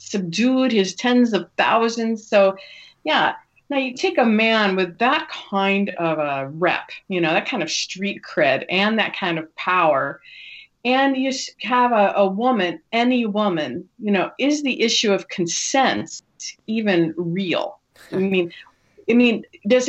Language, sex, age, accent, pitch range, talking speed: English, female, 40-59, American, 170-250 Hz, 155 wpm